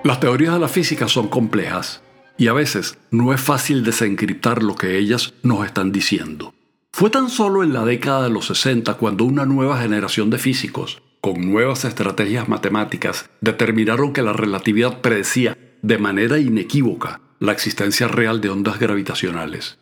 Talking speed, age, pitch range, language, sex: 160 wpm, 60-79, 110-130 Hz, Spanish, male